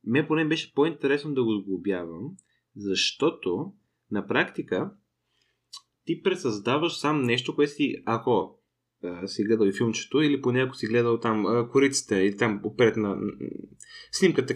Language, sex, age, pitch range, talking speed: Bulgarian, male, 20-39, 110-145 Hz, 155 wpm